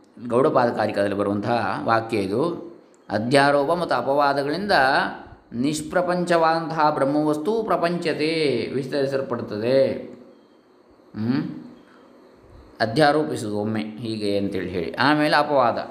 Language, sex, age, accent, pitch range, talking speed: Kannada, male, 20-39, native, 105-145 Hz, 70 wpm